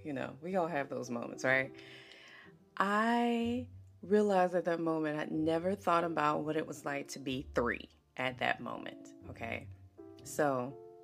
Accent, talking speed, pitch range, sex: American, 160 wpm, 130-205 Hz, female